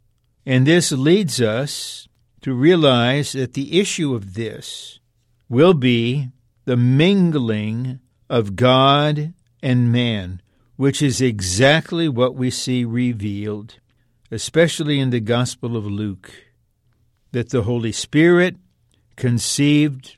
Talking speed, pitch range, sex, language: 110 wpm, 115-145 Hz, male, English